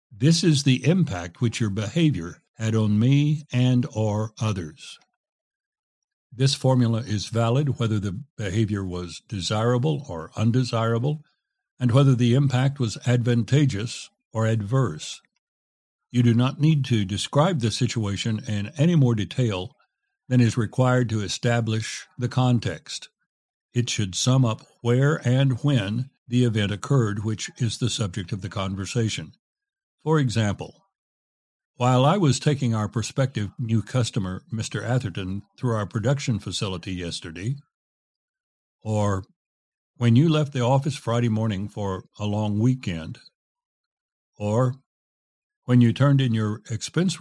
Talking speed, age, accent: 130 wpm, 60-79, American